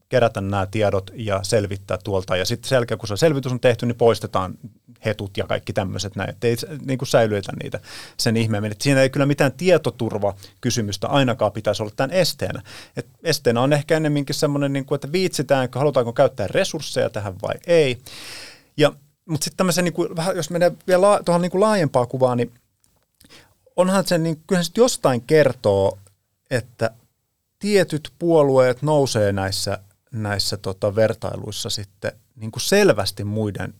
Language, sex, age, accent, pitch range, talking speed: Finnish, male, 30-49, native, 105-145 Hz, 150 wpm